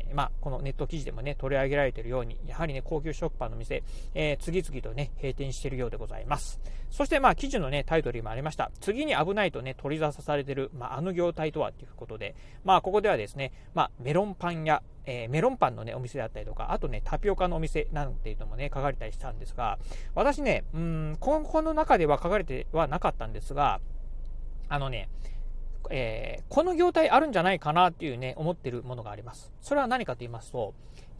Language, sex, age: Japanese, male, 40-59